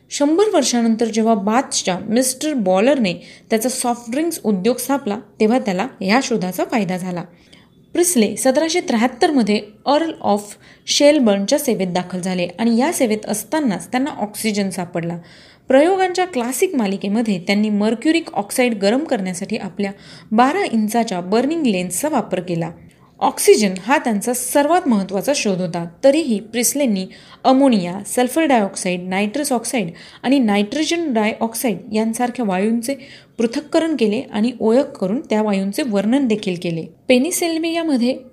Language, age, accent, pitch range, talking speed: Marathi, 30-49, native, 200-270 Hz, 120 wpm